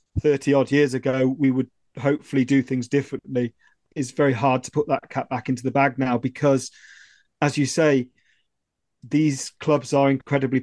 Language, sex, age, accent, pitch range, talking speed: English, male, 30-49, British, 125-145 Hz, 165 wpm